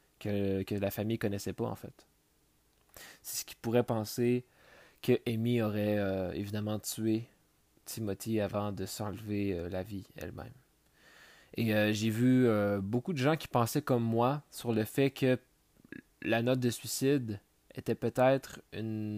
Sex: male